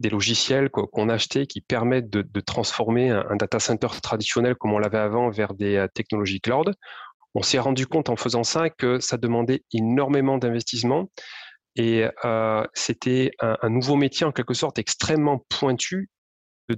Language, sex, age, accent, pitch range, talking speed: French, male, 30-49, French, 110-130 Hz, 165 wpm